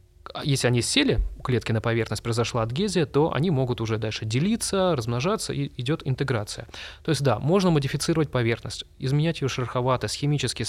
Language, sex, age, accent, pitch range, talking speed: Russian, male, 20-39, native, 110-140 Hz, 155 wpm